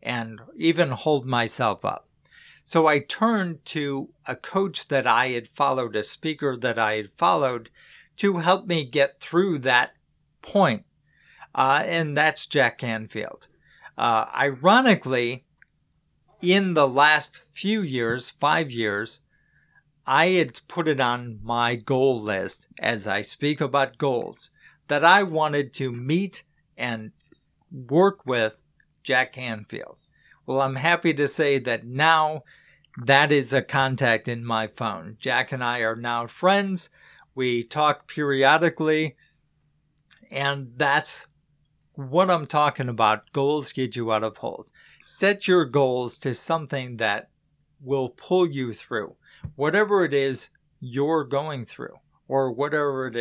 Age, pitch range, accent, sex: 50-69, 125-155 Hz, American, male